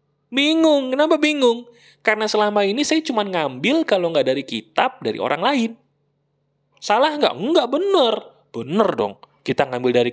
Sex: male